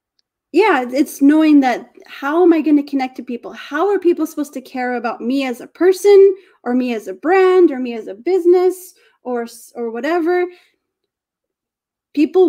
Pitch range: 235-315 Hz